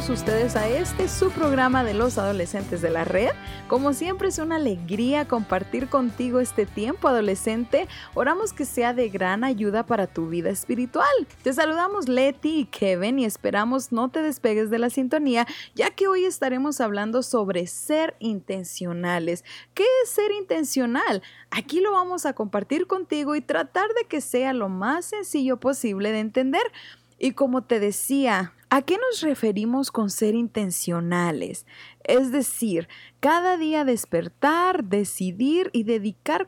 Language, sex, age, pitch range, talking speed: English, female, 20-39, 205-295 Hz, 150 wpm